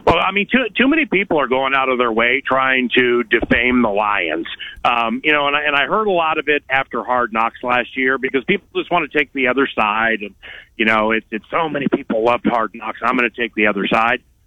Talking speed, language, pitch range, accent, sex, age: 255 wpm, English, 120-155 Hz, American, male, 50-69